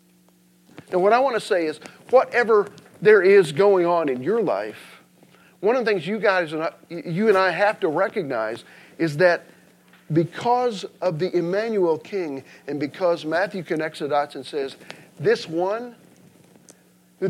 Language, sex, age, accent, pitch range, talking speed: English, male, 50-69, American, 120-190 Hz, 165 wpm